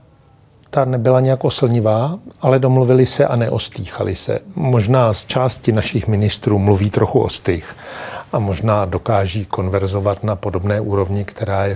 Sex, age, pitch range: male, 50-69, 100-120 Hz